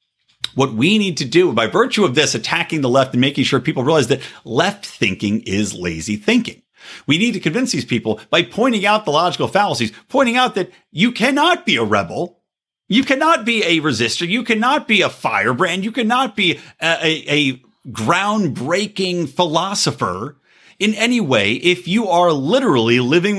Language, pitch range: English, 140-225 Hz